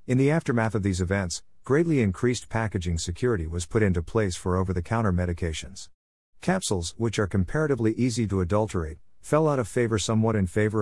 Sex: male